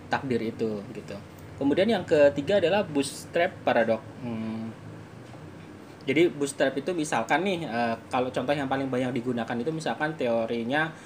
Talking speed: 140 wpm